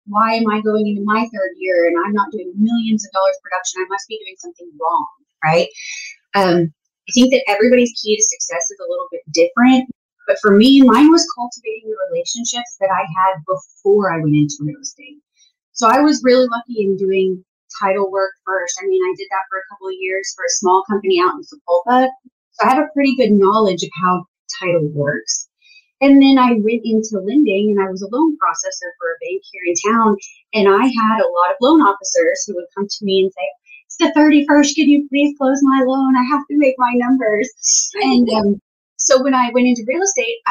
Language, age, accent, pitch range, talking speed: English, 30-49, American, 195-275 Hz, 220 wpm